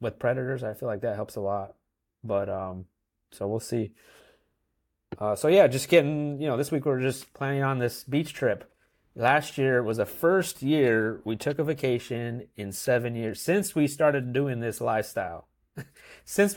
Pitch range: 110-140 Hz